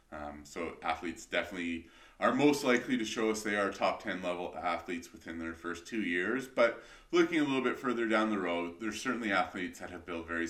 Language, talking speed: English, 210 wpm